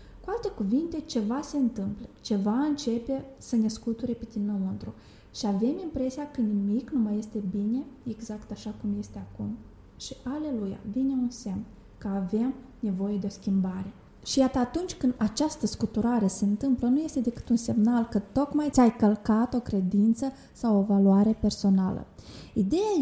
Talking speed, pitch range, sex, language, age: 160 wpm, 200-250 Hz, female, Romanian, 20-39